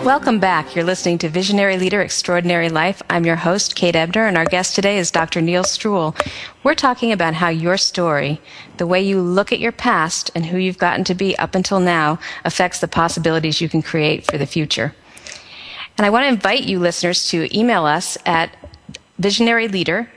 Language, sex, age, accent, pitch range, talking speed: English, female, 40-59, American, 165-195 Hz, 195 wpm